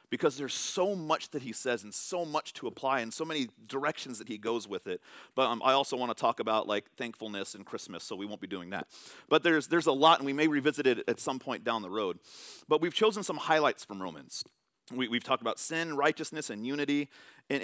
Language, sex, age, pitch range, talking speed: English, male, 40-59, 130-175 Hz, 240 wpm